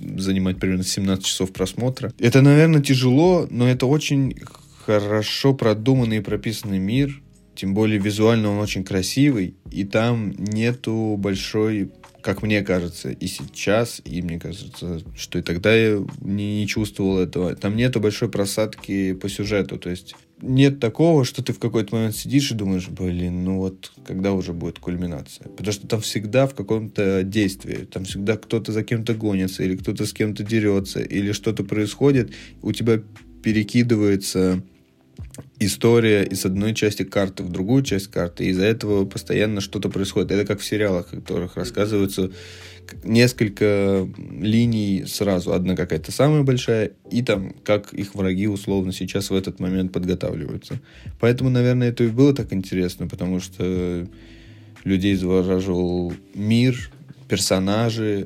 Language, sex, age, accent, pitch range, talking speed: Russian, male, 20-39, native, 95-115 Hz, 150 wpm